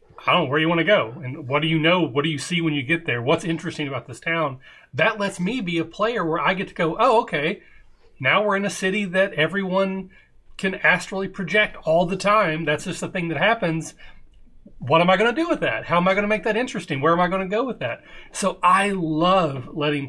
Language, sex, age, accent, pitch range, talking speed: English, male, 30-49, American, 135-170 Hz, 255 wpm